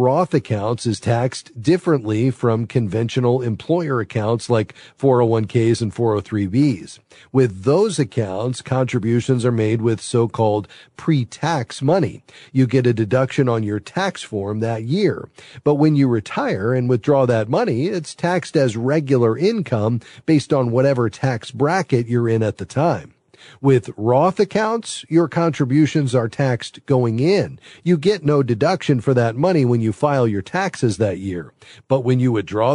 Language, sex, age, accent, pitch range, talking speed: English, male, 40-59, American, 115-150 Hz, 150 wpm